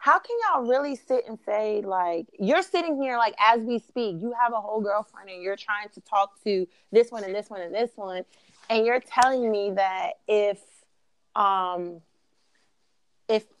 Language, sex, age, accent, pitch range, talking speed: English, female, 30-49, American, 180-235 Hz, 185 wpm